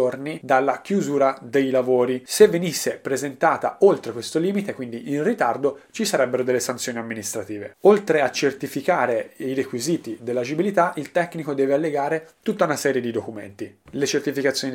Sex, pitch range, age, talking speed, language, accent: male, 130-160 Hz, 30-49, 140 wpm, Italian, native